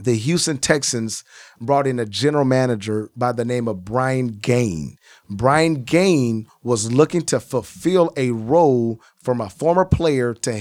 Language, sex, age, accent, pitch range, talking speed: English, male, 40-59, American, 115-150 Hz, 155 wpm